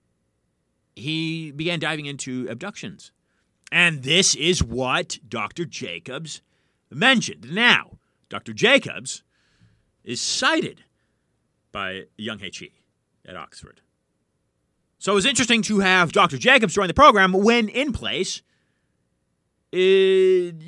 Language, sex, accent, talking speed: English, male, American, 105 wpm